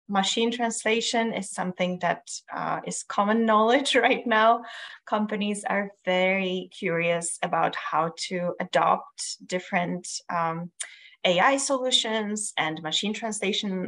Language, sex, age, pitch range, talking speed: English, female, 20-39, 175-225 Hz, 110 wpm